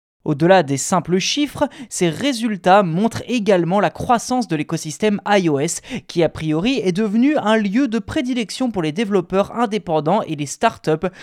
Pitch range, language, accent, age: 160-225 Hz, French, French, 20-39